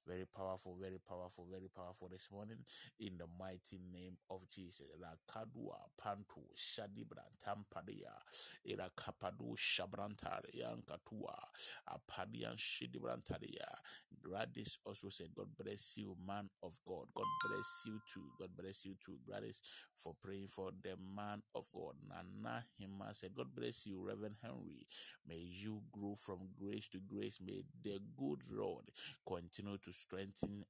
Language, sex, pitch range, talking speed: English, male, 90-100 Hz, 115 wpm